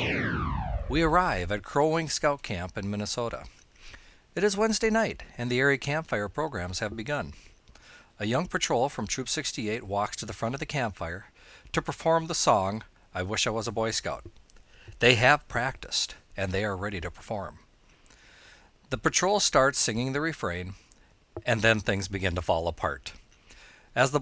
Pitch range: 95-130 Hz